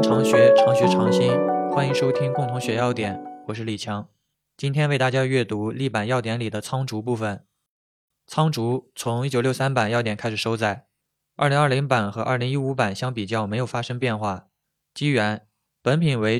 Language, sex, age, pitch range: Chinese, male, 20-39, 110-135 Hz